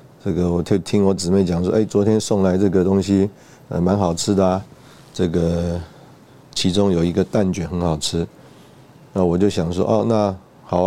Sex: male